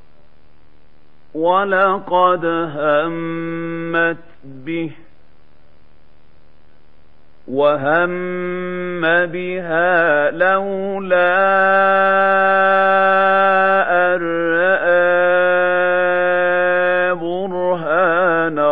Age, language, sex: 50-69, Arabic, male